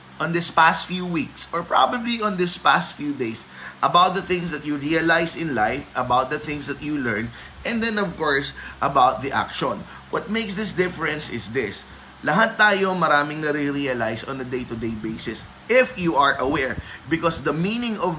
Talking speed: 180 wpm